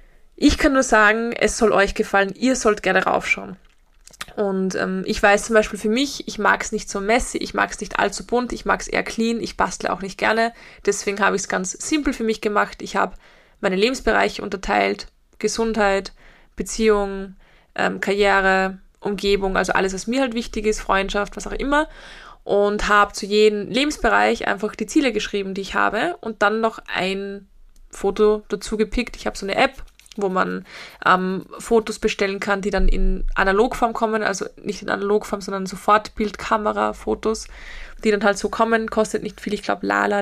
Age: 20-39